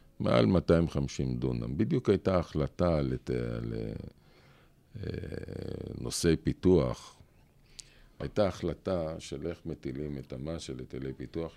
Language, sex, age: Hebrew, male, 50-69